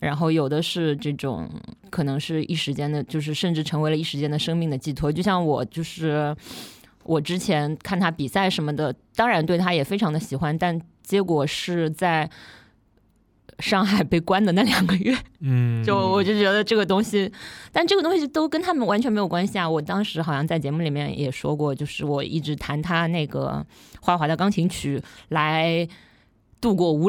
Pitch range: 145-190 Hz